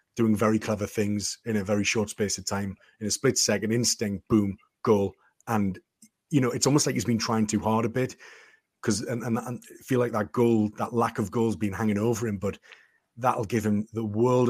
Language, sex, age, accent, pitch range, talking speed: English, male, 30-49, British, 110-125 Hz, 220 wpm